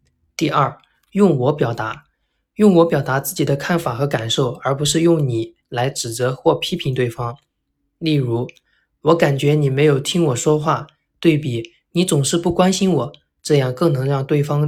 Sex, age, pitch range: male, 20-39, 130-165 Hz